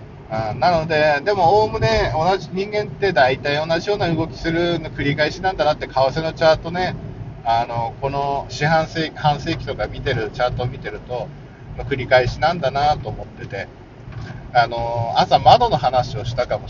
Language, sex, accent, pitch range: Japanese, male, native, 125-155 Hz